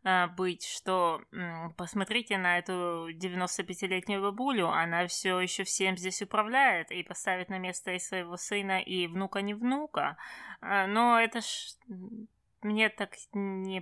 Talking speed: 130 wpm